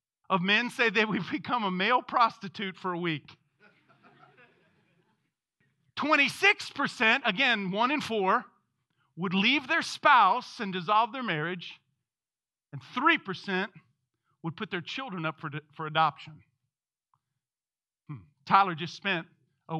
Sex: male